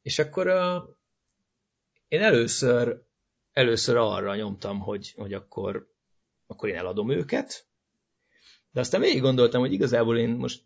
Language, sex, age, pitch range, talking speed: Hungarian, male, 30-49, 100-140 Hz, 130 wpm